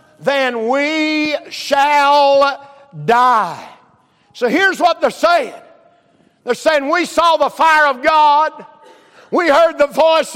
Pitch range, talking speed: 265-325 Hz, 120 wpm